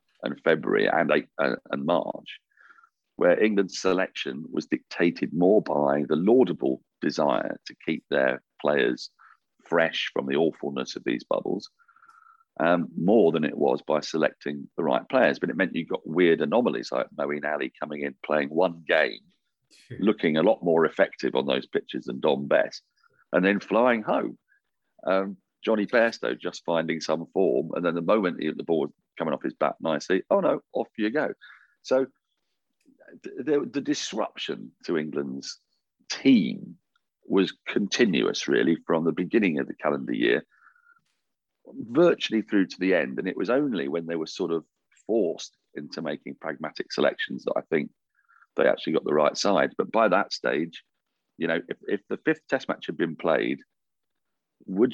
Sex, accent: male, British